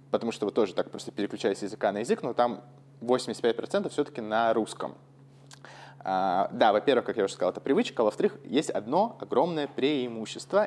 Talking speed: 165 wpm